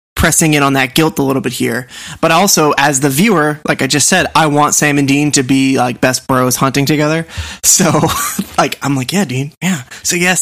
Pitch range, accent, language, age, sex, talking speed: 130-150 Hz, American, English, 20-39, male, 225 wpm